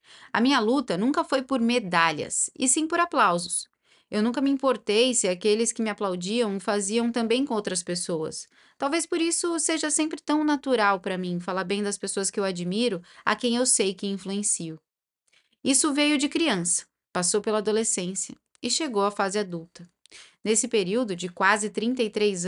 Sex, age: female, 10-29